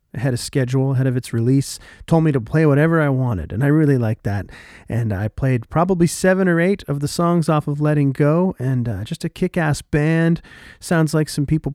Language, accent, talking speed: English, American, 220 wpm